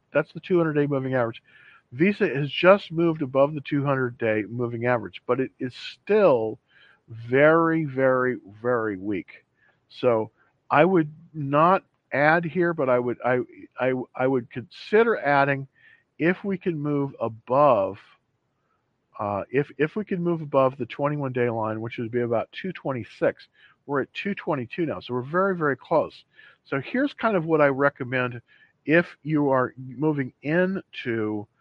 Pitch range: 120-160 Hz